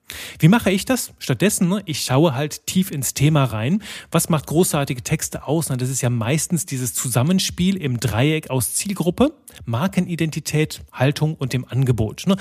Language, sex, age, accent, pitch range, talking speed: German, male, 30-49, German, 120-165 Hz, 155 wpm